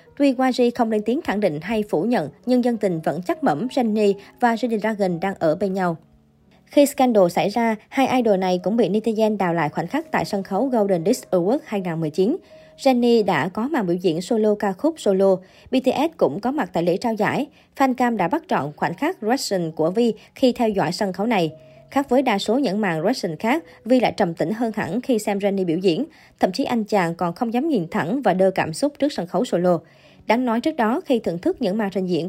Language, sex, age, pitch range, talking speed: Vietnamese, male, 20-39, 185-245 Hz, 235 wpm